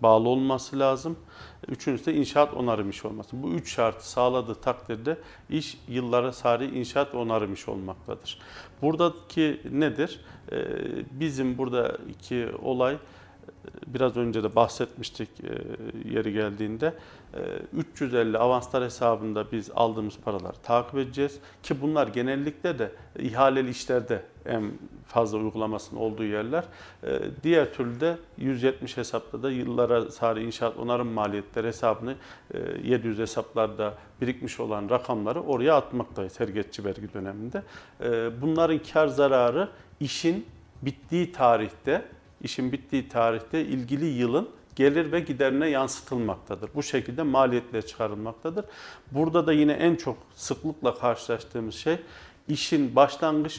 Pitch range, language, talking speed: 115-145 Hz, Turkish, 115 wpm